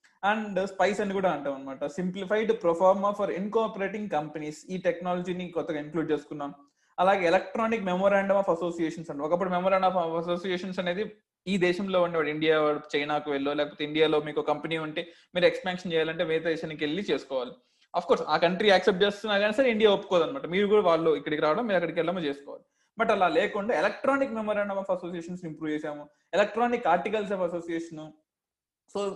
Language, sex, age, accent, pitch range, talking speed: Telugu, male, 20-39, native, 155-210 Hz, 160 wpm